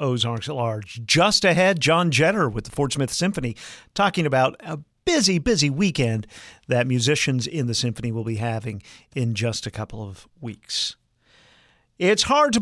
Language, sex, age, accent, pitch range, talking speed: English, male, 50-69, American, 120-165 Hz, 165 wpm